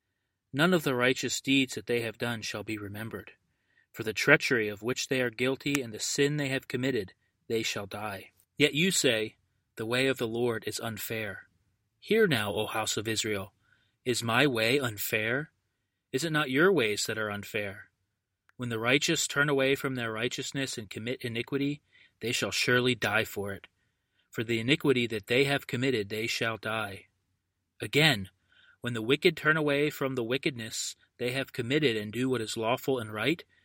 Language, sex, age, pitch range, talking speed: English, male, 30-49, 110-140 Hz, 185 wpm